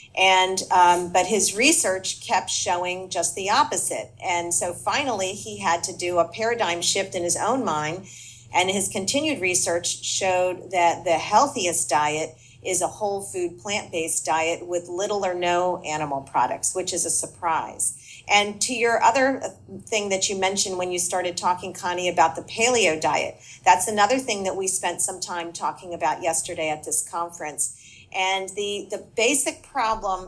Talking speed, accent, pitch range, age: 170 wpm, American, 170-195 Hz, 40-59